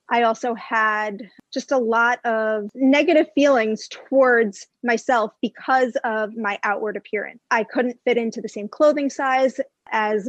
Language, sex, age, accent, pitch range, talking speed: English, female, 20-39, American, 215-255 Hz, 145 wpm